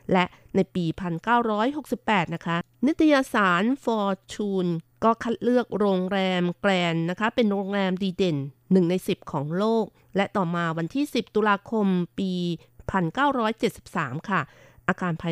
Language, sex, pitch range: Thai, female, 170-210 Hz